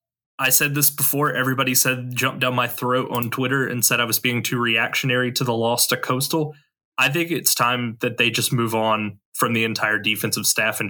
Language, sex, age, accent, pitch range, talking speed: English, male, 20-39, American, 115-135 Hz, 215 wpm